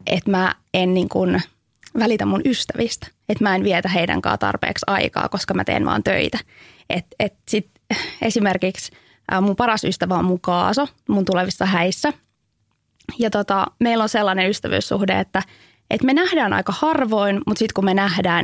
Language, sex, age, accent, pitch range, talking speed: Finnish, female, 20-39, native, 190-275 Hz, 160 wpm